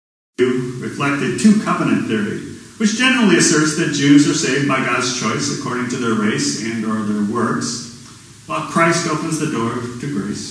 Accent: American